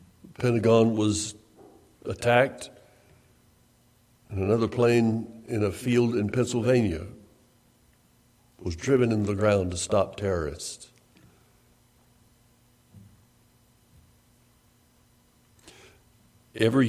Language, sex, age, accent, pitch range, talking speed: English, male, 60-79, American, 100-120 Hz, 70 wpm